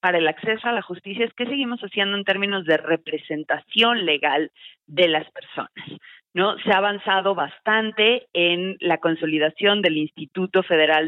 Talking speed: 155 wpm